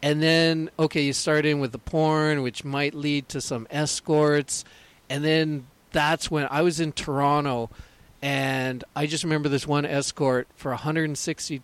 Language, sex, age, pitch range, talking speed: English, male, 40-59, 135-160 Hz, 165 wpm